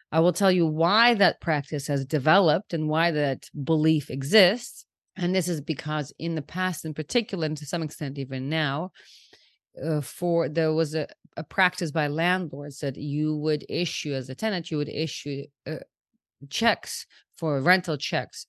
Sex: female